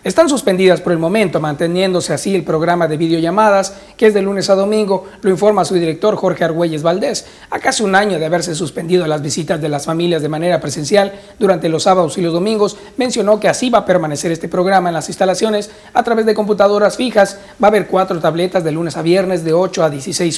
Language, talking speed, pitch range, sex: Spanish, 220 wpm, 170-210 Hz, male